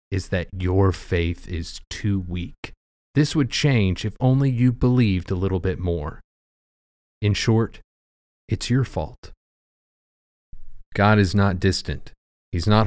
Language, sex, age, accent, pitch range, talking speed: English, male, 30-49, American, 80-105 Hz, 135 wpm